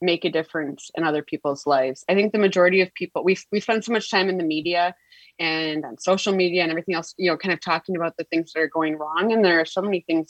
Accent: American